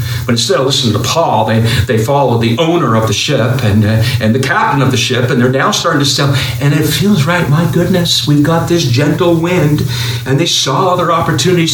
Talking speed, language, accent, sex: 225 wpm, English, American, male